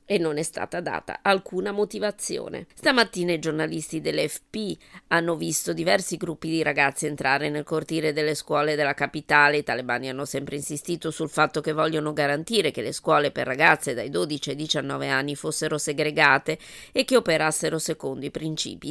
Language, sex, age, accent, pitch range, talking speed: Italian, female, 20-39, native, 150-175 Hz, 165 wpm